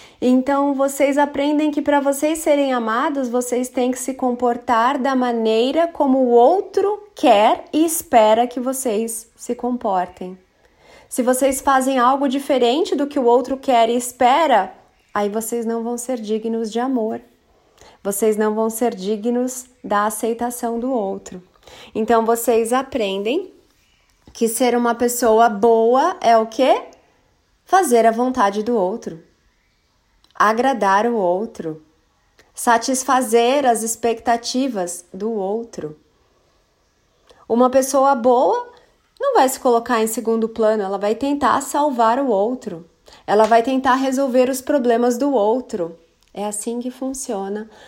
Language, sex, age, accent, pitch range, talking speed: Portuguese, female, 30-49, Brazilian, 225-270 Hz, 135 wpm